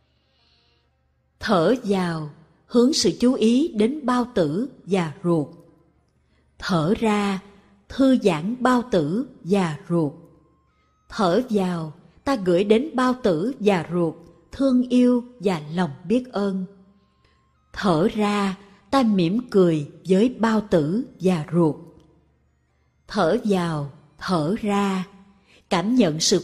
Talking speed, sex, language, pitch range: 115 wpm, female, Vietnamese, 165-230 Hz